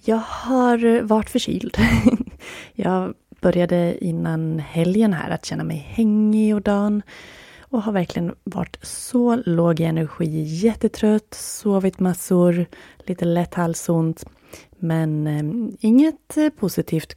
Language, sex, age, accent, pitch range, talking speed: Swedish, female, 30-49, native, 170-225 Hz, 115 wpm